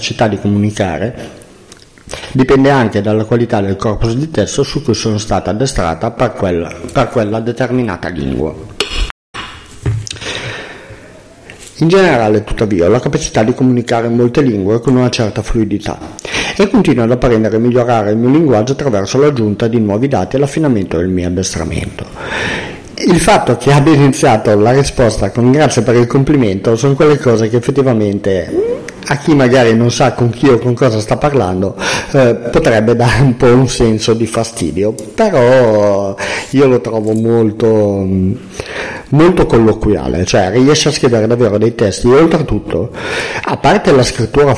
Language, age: Italian, 50-69